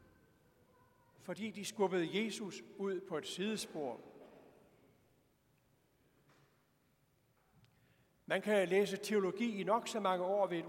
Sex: male